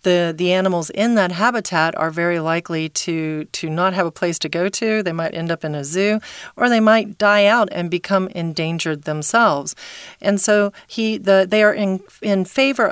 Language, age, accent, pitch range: Chinese, 40-59, American, 160-195 Hz